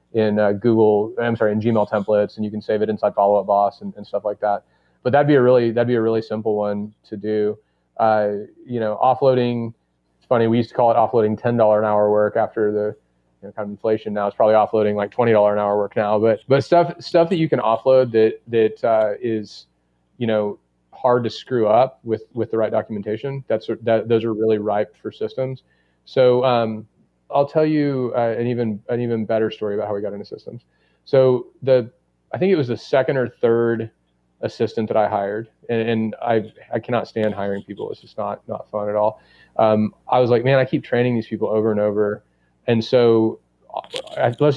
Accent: American